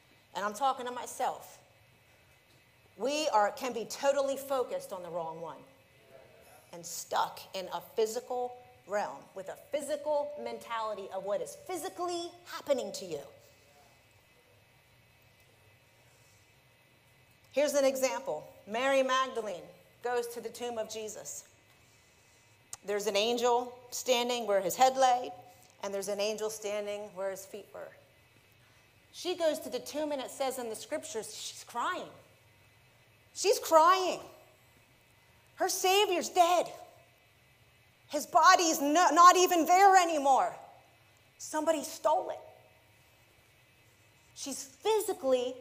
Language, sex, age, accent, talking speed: English, female, 40-59, American, 115 wpm